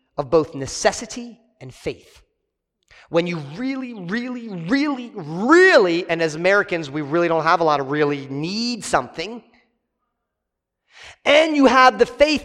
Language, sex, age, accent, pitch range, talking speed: English, male, 40-59, American, 165-270 Hz, 140 wpm